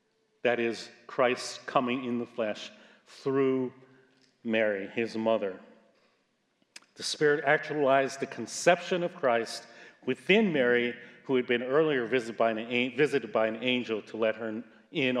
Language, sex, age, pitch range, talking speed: English, male, 40-59, 115-150 Hz, 130 wpm